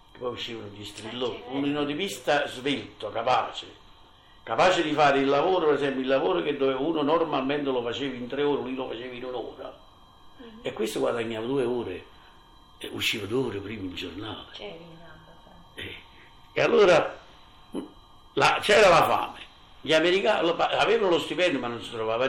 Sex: male